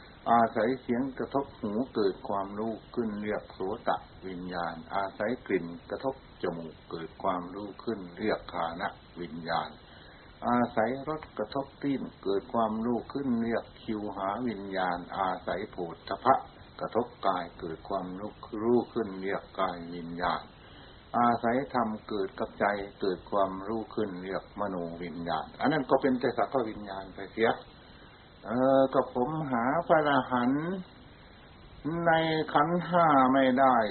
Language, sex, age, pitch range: Thai, male, 60-79, 95-130 Hz